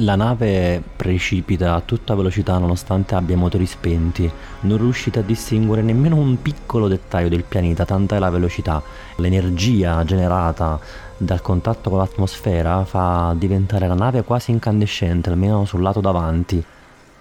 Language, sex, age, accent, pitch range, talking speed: Italian, male, 30-49, native, 90-115 Hz, 140 wpm